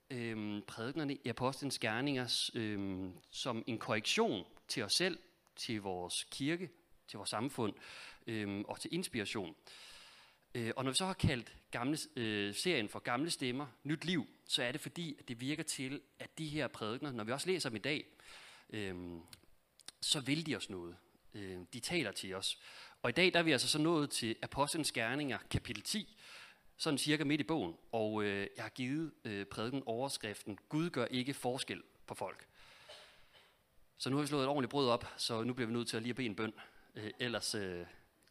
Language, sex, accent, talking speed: Danish, male, native, 190 wpm